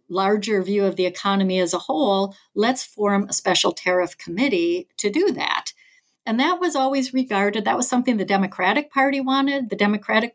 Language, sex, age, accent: English, female, 60-79, American